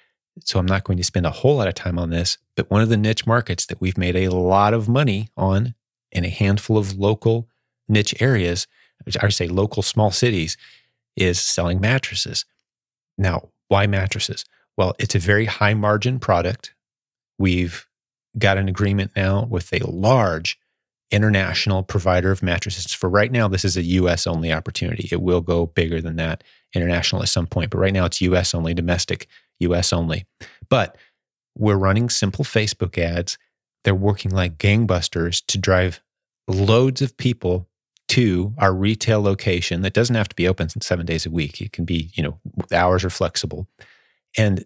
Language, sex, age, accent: English, male, 30-49, American